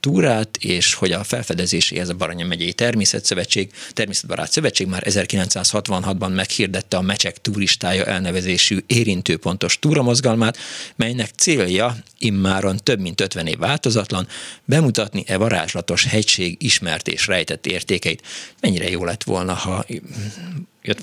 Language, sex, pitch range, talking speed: Hungarian, male, 95-115 Hz, 115 wpm